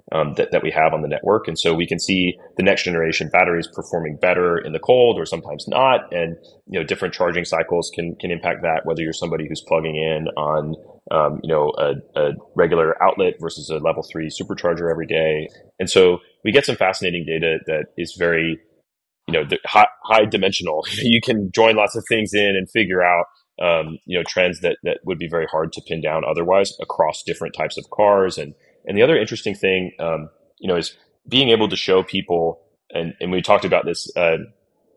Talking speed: 210 wpm